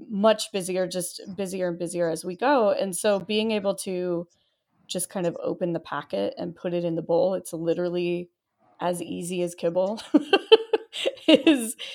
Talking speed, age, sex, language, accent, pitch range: 165 wpm, 20-39, female, English, American, 170-215 Hz